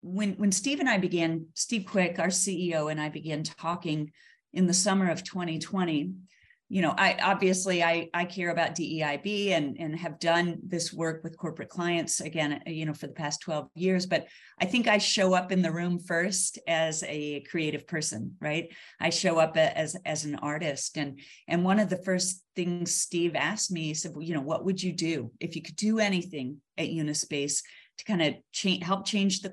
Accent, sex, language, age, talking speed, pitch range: American, female, English, 40-59, 200 wpm, 155-185 Hz